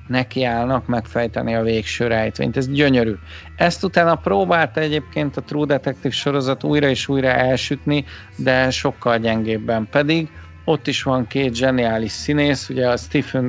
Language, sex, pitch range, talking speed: Hungarian, male, 120-145 Hz, 140 wpm